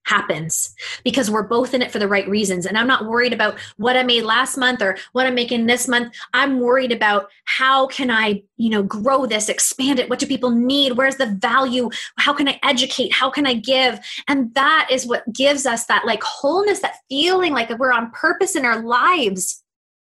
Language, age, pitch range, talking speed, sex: English, 20-39, 220-290 Hz, 215 wpm, female